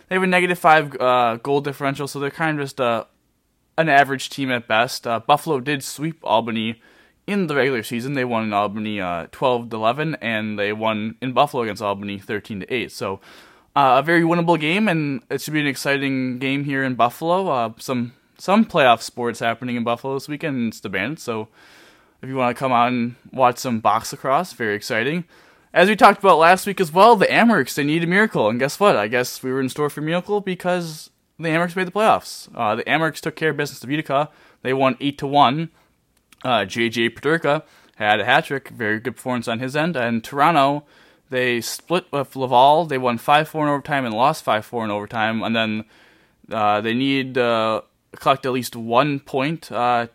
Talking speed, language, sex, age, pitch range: 210 wpm, English, male, 20-39, 120-155 Hz